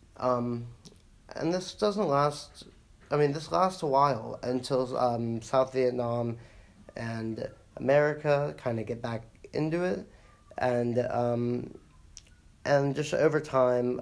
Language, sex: English, male